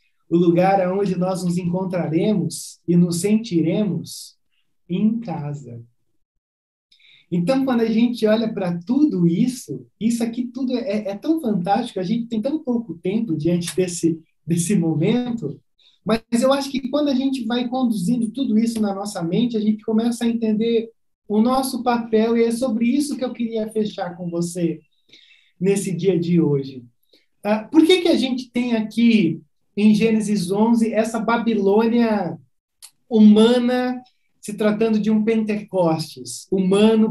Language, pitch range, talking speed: Portuguese, 175-230 Hz, 145 wpm